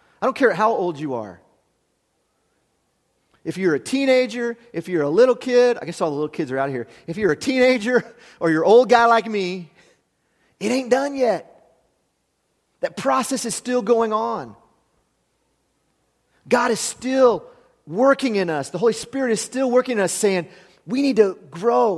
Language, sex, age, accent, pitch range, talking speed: English, male, 30-49, American, 160-240 Hz, 180 wpm